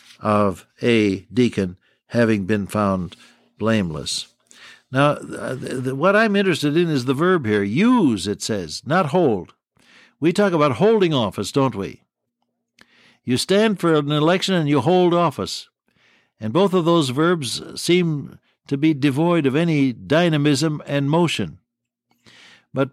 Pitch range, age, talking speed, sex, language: 120-165 Hz, 60-79, 135 wpm, male, English